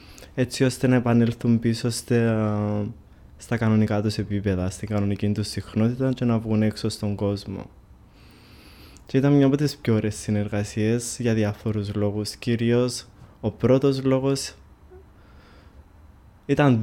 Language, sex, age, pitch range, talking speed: Greek, male, 20-39, 100-120 Hz, 130 wpm